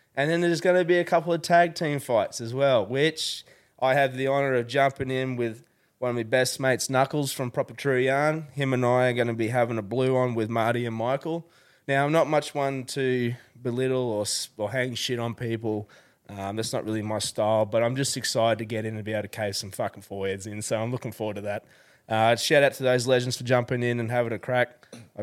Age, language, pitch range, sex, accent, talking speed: 20-39, English, 110-135 Hz, male, Australian, 245 wpm